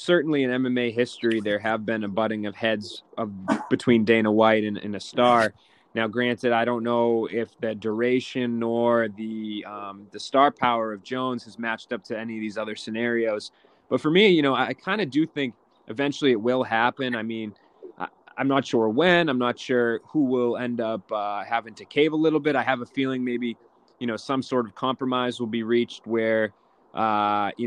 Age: 20-39